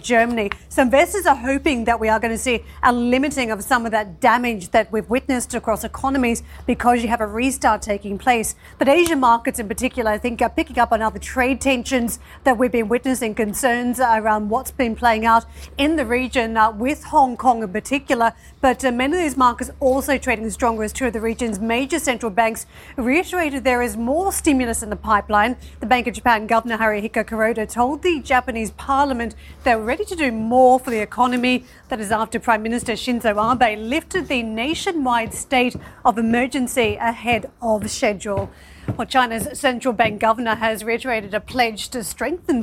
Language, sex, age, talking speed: English, female, 40-59, 190 wpm